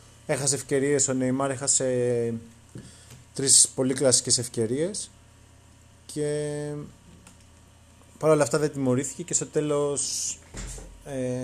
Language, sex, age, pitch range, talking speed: Greek, male, 30-49, 115-145 Hz, 100 wpm